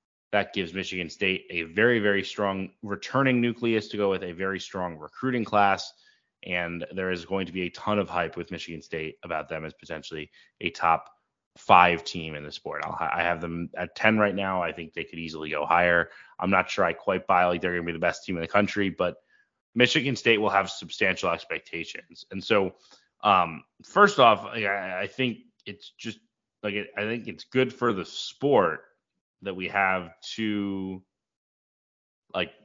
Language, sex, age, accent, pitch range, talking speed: English, male, 20-39, American, 85-110 Hz, 190 wpm